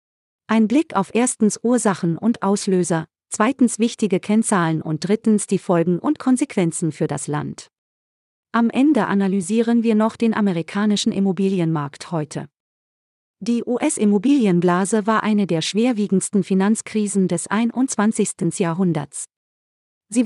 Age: 40-59